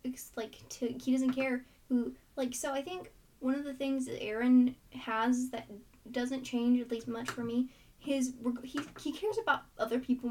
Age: 10-29